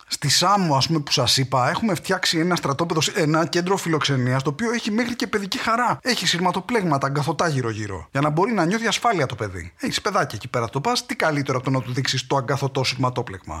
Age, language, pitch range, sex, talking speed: 20-39, English, 135-200 Hz, male, 215 wpm